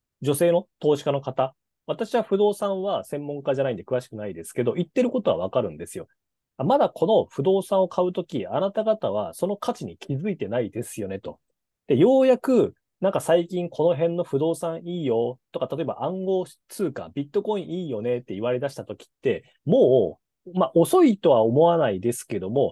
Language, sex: Japanese, male